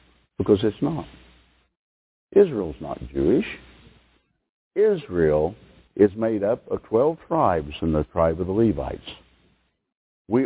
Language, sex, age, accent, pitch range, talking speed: English, male, 60-79, American, 100-145 Hz, 115 wpm